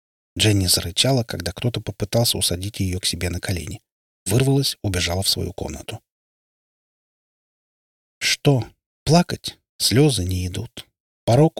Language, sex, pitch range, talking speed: Russian, male, 90-125 Hz, 115 wpm